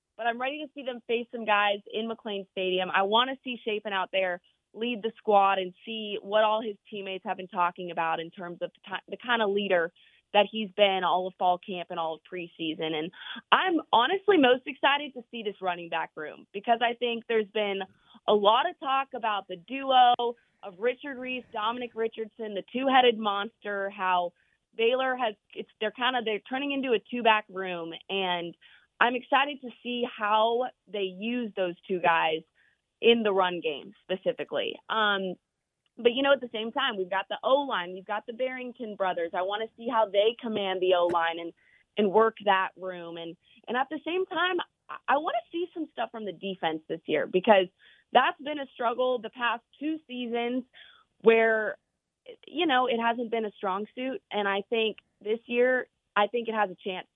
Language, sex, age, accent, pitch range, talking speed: English, female, 20-39, American, 190-245 Hz, 200 wpm